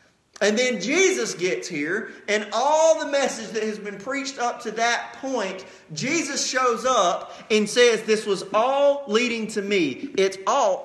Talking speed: 165 wpm